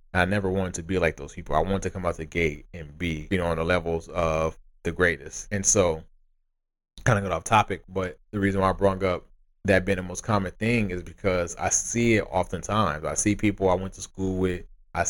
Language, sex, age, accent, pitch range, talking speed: English, male, 20-39, American, 85-100 Hz, 240 wpm